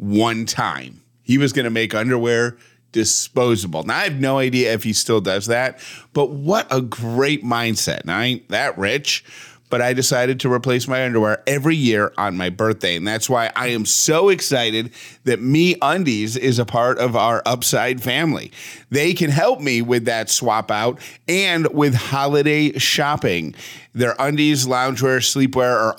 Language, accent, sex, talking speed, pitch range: English, American, male, 175 wpm, 110-140 Hz